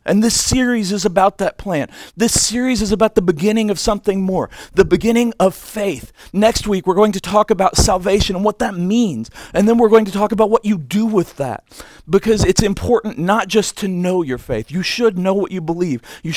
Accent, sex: American, male